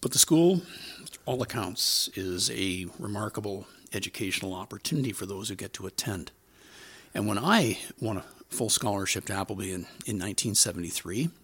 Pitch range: 100-145 Hz